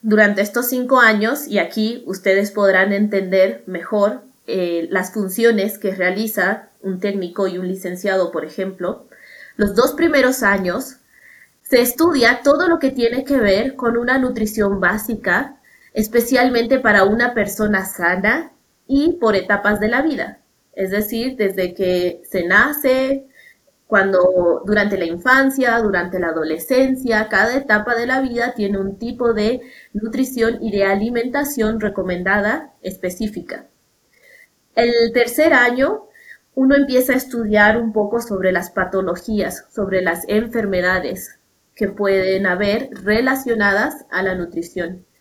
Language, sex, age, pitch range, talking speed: English, female, 20-39, 190-250 Hz, 130 wpm